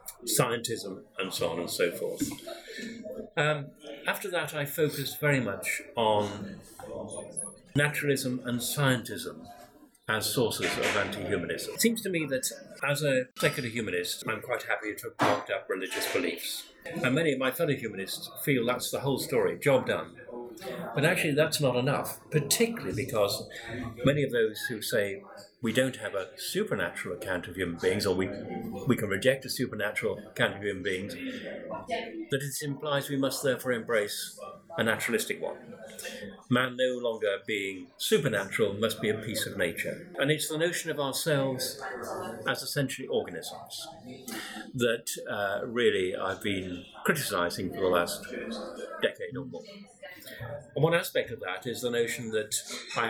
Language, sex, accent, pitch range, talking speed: English, male, British, 120-165 Hz, 155 wpm